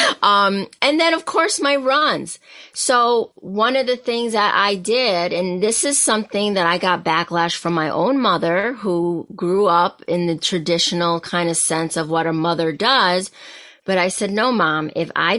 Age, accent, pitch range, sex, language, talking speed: 30-49, American, 175-245 Hz, female, English, 185 wpm